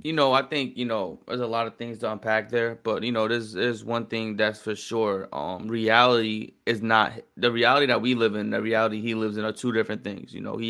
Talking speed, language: 260 wpm, English